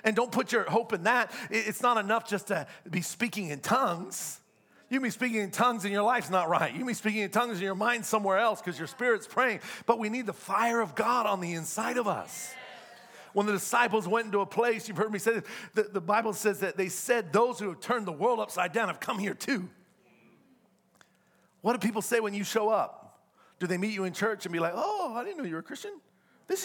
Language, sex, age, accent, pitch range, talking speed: English, male, 40-59, American, 165-230 Hz, 245 wpm